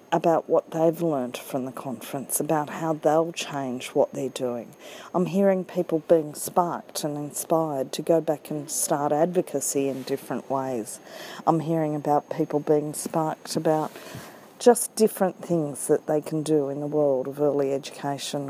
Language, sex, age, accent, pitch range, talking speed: English, female, 40-59, Australian, 150-185 Hz, 160 wpm